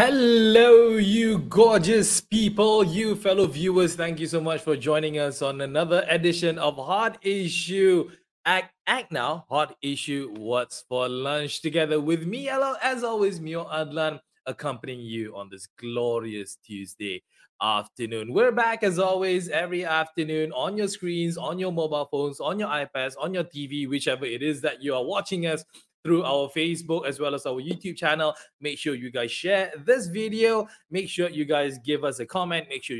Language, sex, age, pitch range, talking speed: English, male, 20-39, 130-185 Hz, 175 wpm